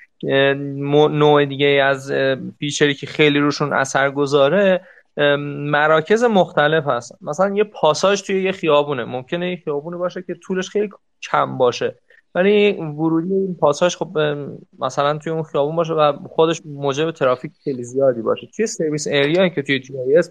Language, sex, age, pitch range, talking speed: Persian, male, 20-39, 135-180 Hz, 150 wpm